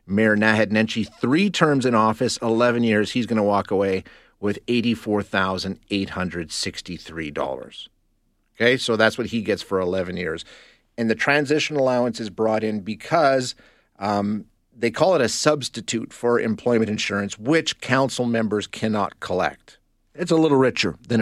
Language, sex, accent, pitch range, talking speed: English, male, American, 100-125 Hz, 145 wpm